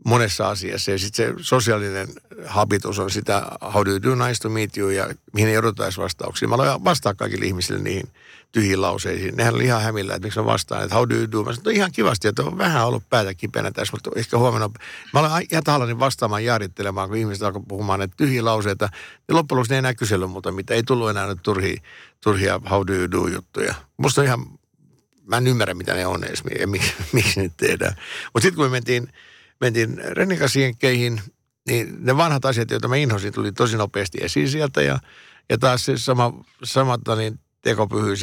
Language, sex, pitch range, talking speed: Finnish, male, 100-125 Hz, 195 wpm